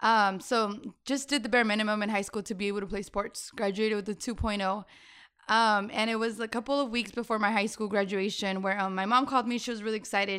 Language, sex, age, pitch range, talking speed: English, female, 20-39, 205-240 Hz, 250 wpm